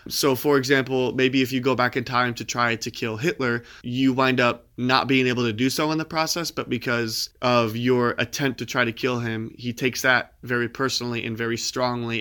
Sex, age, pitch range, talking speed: male, 20-39, 115-135 Hz, 220 wpm